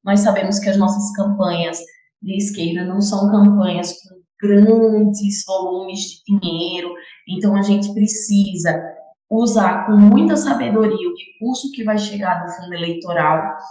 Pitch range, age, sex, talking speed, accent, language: 190-230 Hz, 20-39, female, 140 wpm, Brazilian, Portuguese